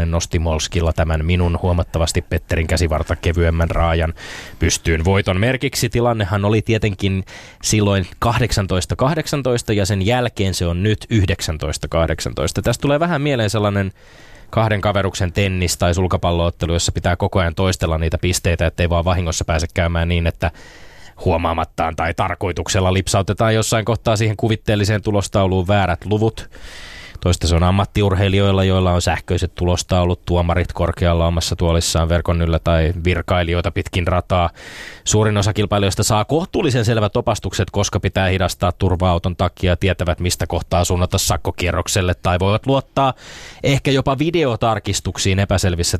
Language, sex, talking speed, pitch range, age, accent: Finnish, male, 135 wpm, 85-105 Hz, 20-39, native